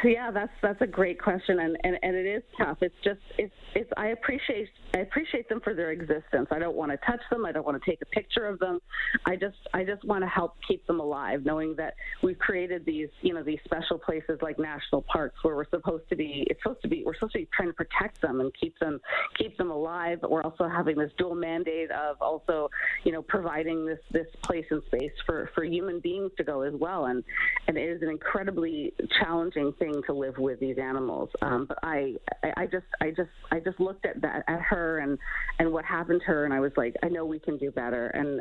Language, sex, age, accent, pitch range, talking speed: English, female, 40-59, American, 150-205 Hz, 240 wpm